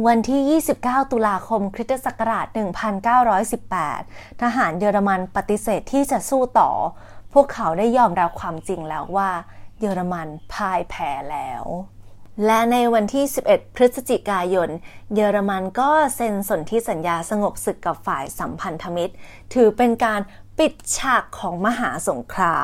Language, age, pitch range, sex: Thai, 20-39, 190-250 Hz, female